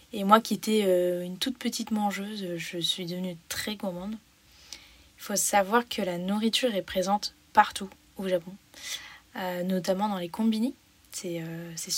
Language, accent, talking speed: French, French, 145 wpm